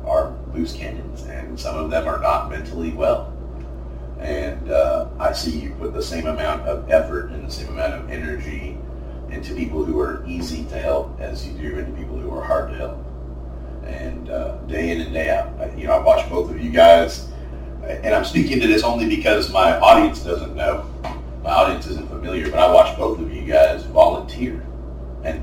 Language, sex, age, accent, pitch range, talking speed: English, male, 40-59, American, 65-80 Hz, 200 wpm